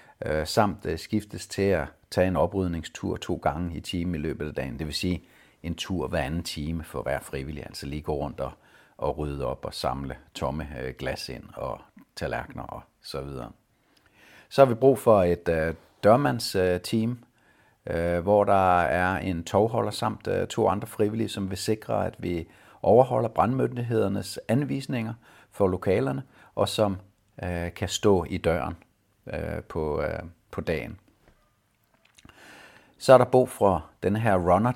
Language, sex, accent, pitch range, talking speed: Danish, male, native, 85-110 Hz, 155 wpm